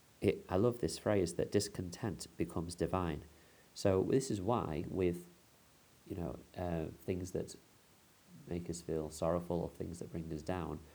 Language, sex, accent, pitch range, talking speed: English, male, British, 80-100 Hz, 160 wpm